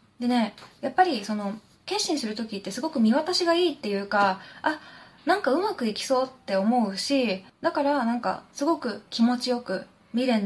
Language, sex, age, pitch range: Japanese, female, 20-39, 200-285 Hz